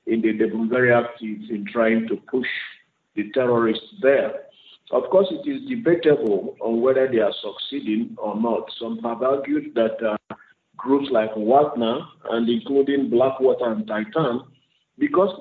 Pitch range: 110-140 Hz